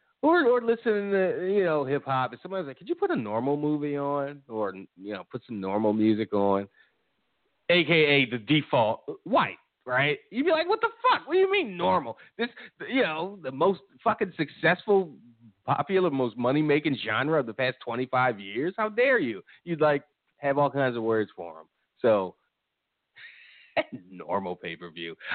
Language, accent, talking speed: English, American, 170 wpm